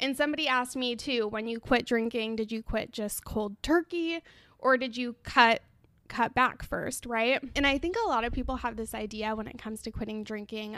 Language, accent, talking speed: English, American, 215 wpm